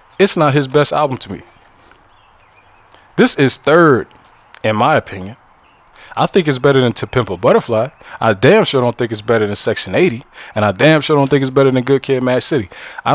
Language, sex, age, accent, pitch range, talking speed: English, male, 20-39, American, 105-135 Hz, 205 wpm